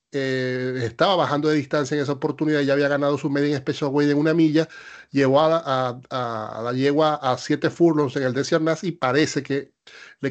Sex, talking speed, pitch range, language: male, 215 wpm, 135-160 Hz, Spanish